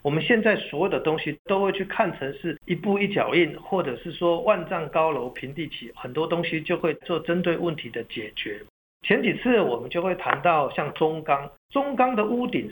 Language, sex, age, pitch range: Chinese, male, 50-69, 160-225 Hz